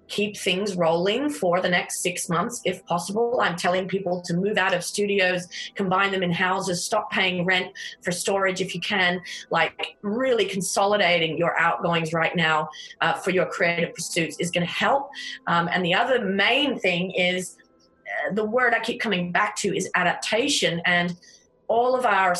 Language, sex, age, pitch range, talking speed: English, female, 30-49, 185-245 Hz, 175 wpm